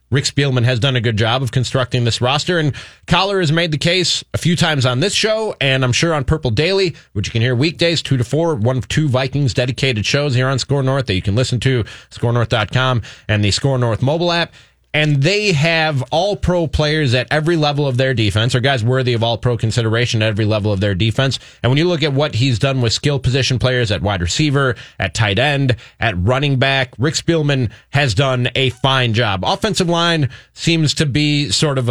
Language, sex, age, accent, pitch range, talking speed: English, male, 30-49, American, 120-160 Hz, 220 wpm